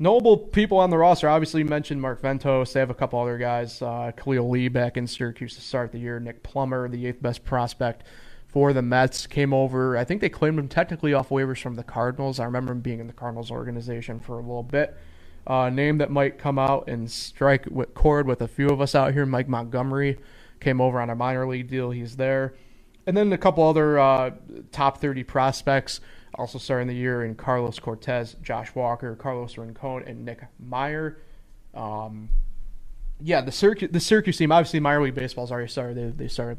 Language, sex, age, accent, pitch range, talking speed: English, male, 20-39, American, 120-140 Hz, 210 wpm